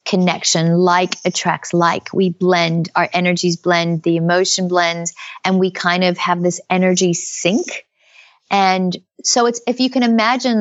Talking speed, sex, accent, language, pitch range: 155 wpm, female, American, English, 175-195 Hz